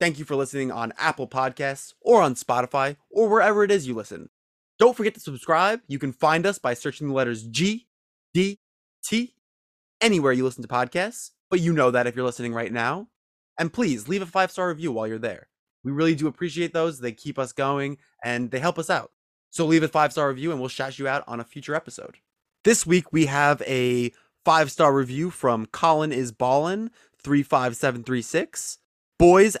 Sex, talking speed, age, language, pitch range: male, 195 wpm, 20-39, English, 130-170 Hz